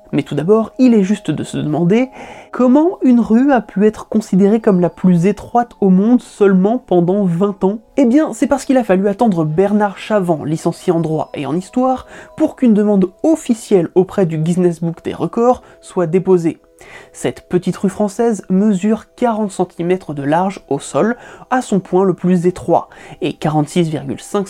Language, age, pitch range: French, 20-39, 165-215 Hz